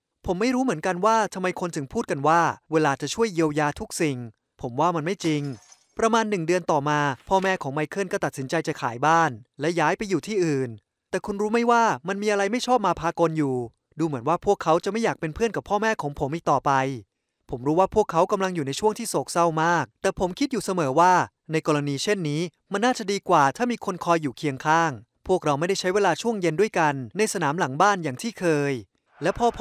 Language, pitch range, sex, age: Thai, 145-205 Hz, male, 20-39